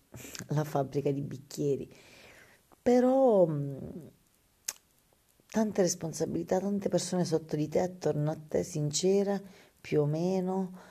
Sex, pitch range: female, 140-175 Hz